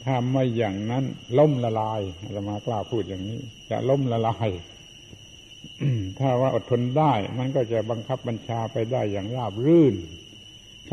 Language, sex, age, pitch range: Thai, male, 70-89, 110-135 Hz